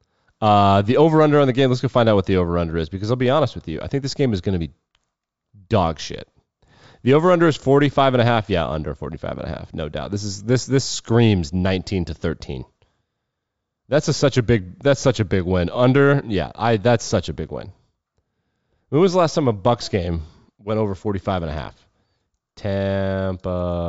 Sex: male